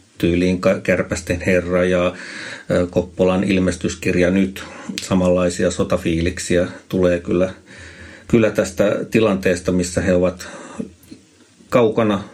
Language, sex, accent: Finnish, male, native